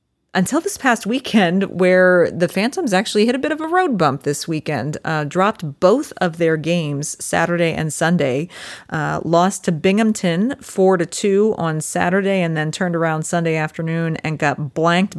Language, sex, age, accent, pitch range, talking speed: English, female, 30-49, American, 150-185 Hz, 175 wpm